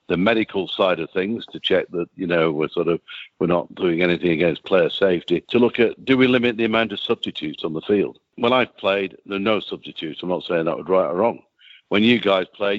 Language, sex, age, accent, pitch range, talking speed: English, male, 60-79, British, 95-115 Hz, 245 wpm